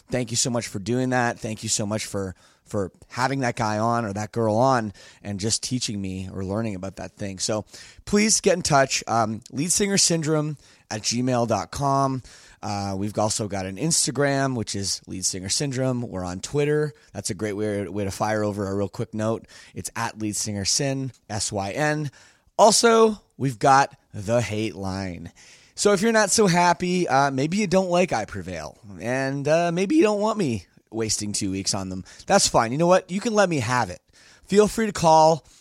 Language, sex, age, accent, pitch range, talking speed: English, male, 20-39, American, 105-155 Hz, 190 wpm